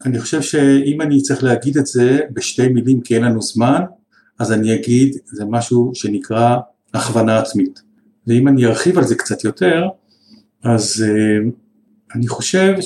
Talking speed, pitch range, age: 150 wpm, 115-150 Hz, 50-69